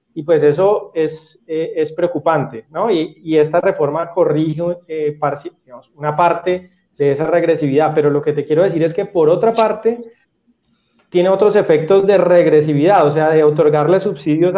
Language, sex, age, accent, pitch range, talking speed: Spanish, male, 20-39, Colombian, 150-190 Hz, 165 wpm